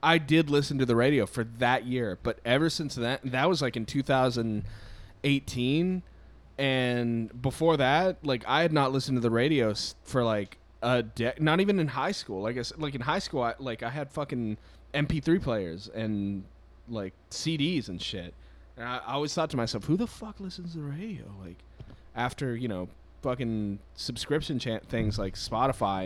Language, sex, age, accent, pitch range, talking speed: English, male, 20-39, American, 105-145 Hz, 175 wpm